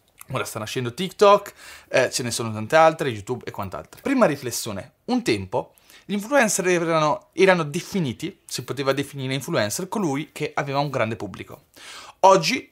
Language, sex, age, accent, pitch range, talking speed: Italian, male, 20-39, native, 125-190 Hz, 155 wpm